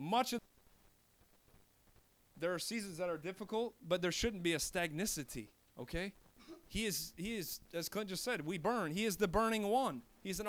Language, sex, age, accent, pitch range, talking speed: English, male, 30-49, American, 145-220 Hz, 185 wpm